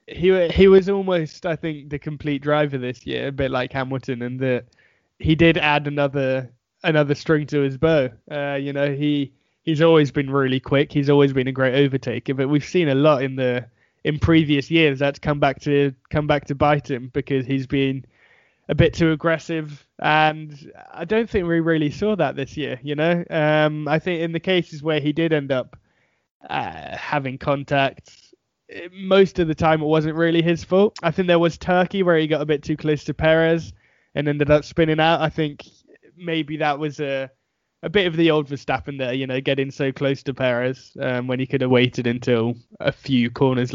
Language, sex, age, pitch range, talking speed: English, male, 20-39, 135-160 Hz, 205 wpm